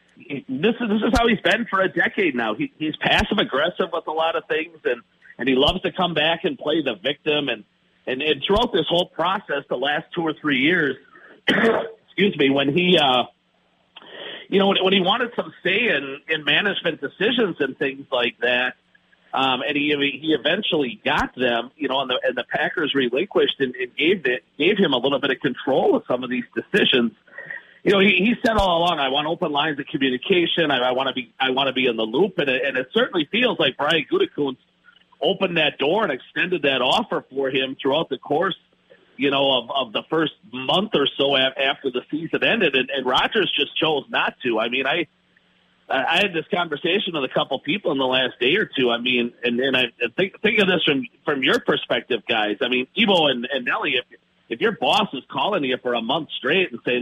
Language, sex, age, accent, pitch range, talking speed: English, male, 50-69, American, 135-195 Hz, 225 wpm